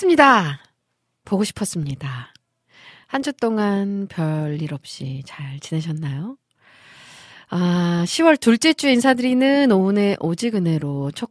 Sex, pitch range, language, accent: female, 155-230 Hz, Korean, native